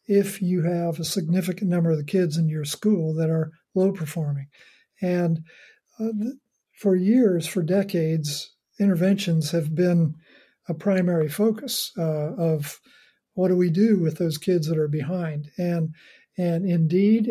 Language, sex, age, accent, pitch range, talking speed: English, male, 50-69, American, 165-200 Hz, 150 wpm